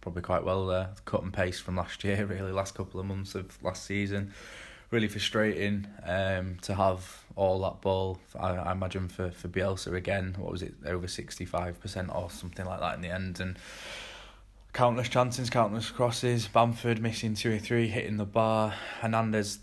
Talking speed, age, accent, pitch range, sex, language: 190 wpm, 20-39, British, 90-105 Hz, male, English